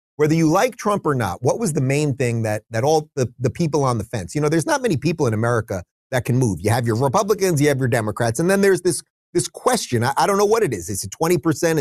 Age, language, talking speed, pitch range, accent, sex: 30-49, English, 280 wpm, 115-155 Hz, American, male